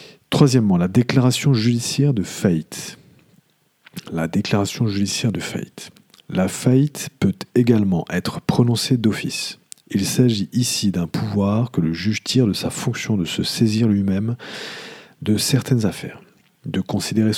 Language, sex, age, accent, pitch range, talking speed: English, male, 40-59, French, 95-125 Hz, 135 wpm